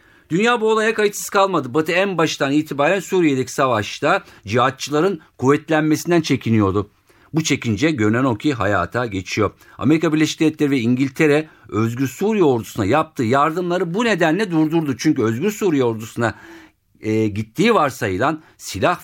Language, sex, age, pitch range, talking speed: Turkish, male, 50-69, 115-180 Hz, 125 wpm